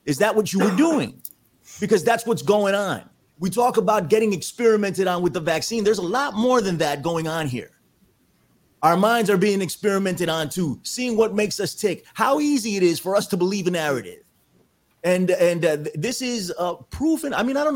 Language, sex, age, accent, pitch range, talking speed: English, male, 30-49, American, 160-225 Hz, 220 wpm